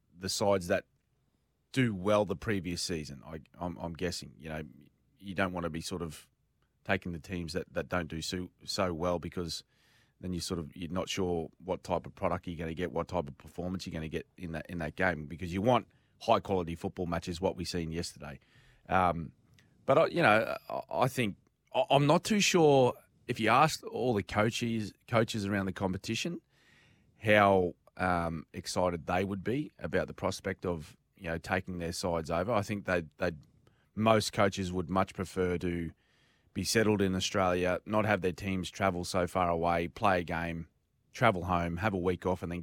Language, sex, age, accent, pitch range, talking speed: English, male, 30-49, Australian, 85-100 Hz, 200 wpm